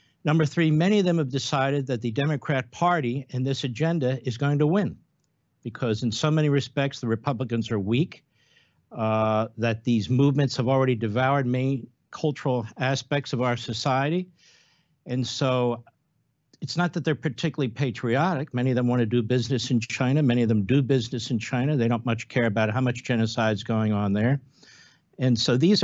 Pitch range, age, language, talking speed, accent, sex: 120-155 Hz, 60-79, English, 185 wpm, American, male